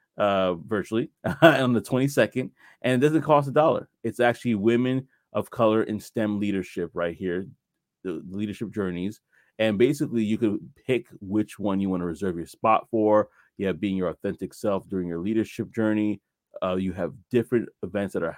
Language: English